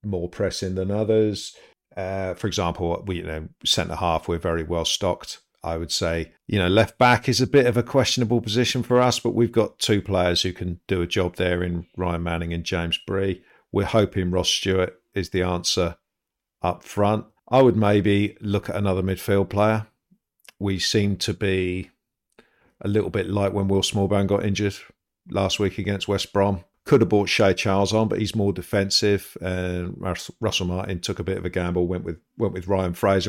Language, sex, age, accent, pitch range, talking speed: English, male, 50-69, British, 85-100 Hz, 200 wpm